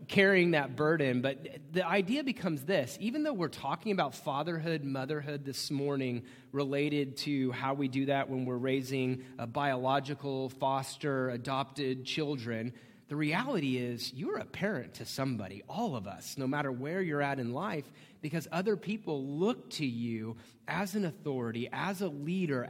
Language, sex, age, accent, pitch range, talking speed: English, male, 30-49, American, 130-175 Hz, 160 wpm